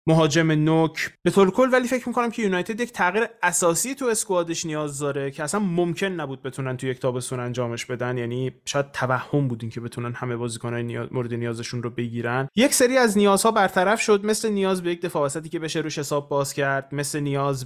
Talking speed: 200 wpm